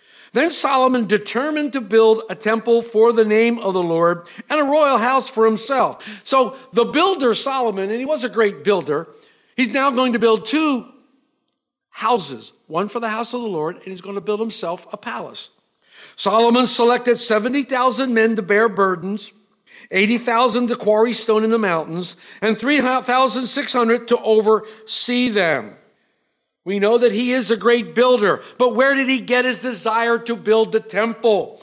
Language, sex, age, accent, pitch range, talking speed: English, male, 50-69, American, 215-260 Hz, 170 wpm